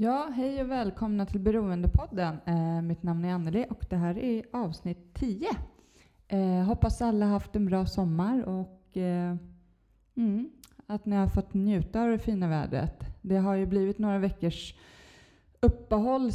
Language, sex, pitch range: Swedish, female, 170-215 Hz